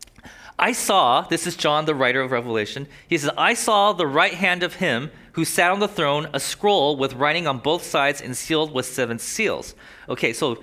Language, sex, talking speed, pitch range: English, male, 210 wpm, 135-175 Hz